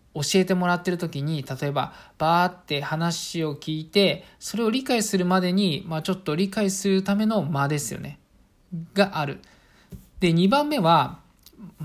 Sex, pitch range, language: male, 150-200 Hz, Japanese